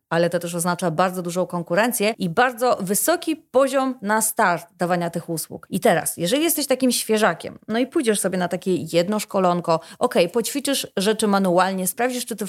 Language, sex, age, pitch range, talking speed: Polish, female, 30-49, 180-240 Hz, 180 wpm